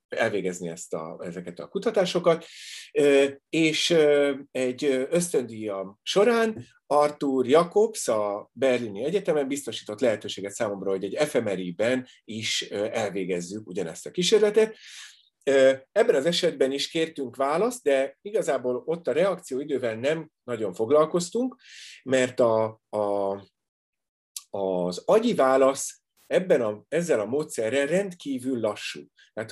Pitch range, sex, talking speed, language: 110-170 Hz, male, 110 wpm, Hungarian